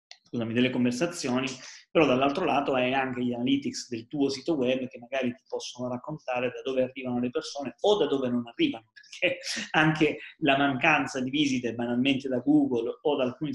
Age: 30-49